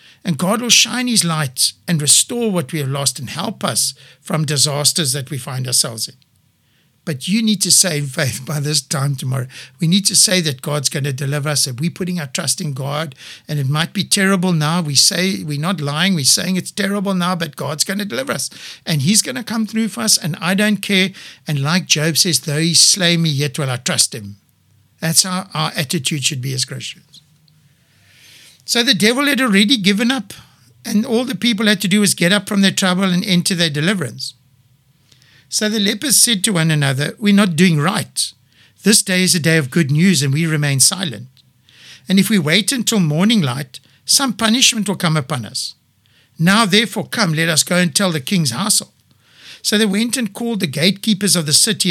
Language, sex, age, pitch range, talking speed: English, male, 60-79, 140-195 Hz, 215 wpm